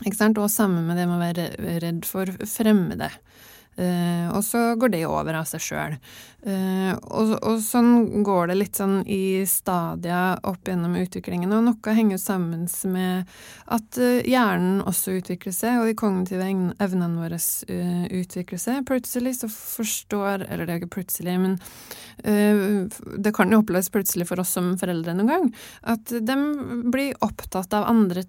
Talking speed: 155 wpm